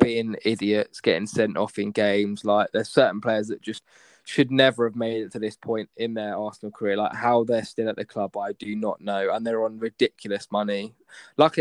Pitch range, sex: 105-115 Hz, male